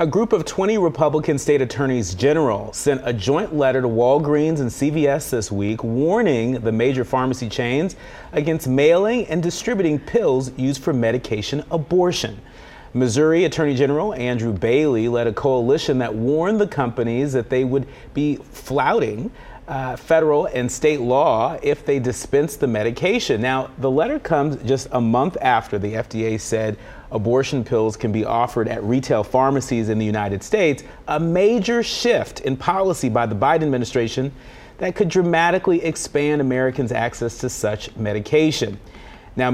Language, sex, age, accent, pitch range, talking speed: English, male, 40-59, American, 115-150 Hz, 155 wpm